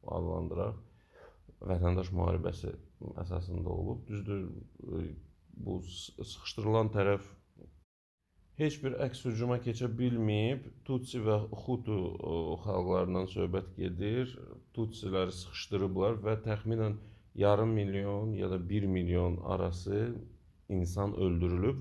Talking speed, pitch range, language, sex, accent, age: 95 wpm, 90-110 Hz, English, male, Turkish, 40-59